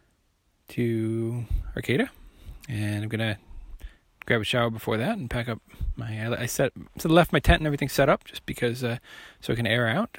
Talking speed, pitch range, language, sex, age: 195 wpm, 110-150 Hz, English, male, 20-39